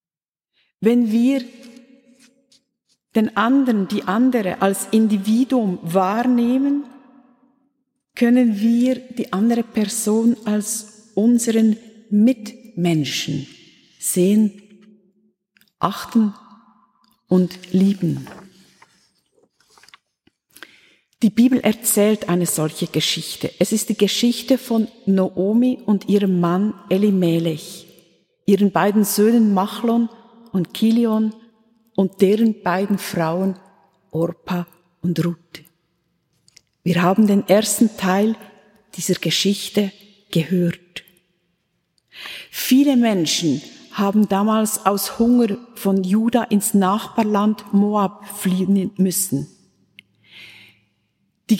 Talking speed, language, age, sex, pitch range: 85 wpm, German, 50-69, female, 185-230 Hz